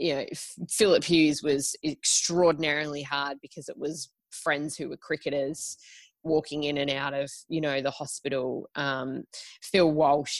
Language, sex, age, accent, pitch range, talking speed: English, female, 20-39, Australian, 140-165 Hz, 150 wpm